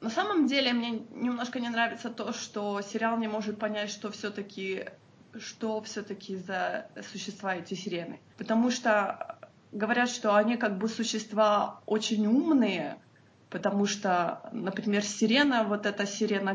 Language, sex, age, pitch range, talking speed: Russian, female, 20-39, 195-230 Hz, 140 wpm